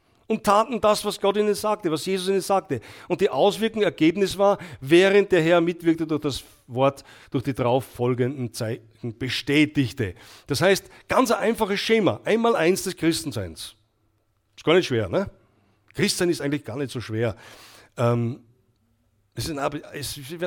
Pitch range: 120-185 Hz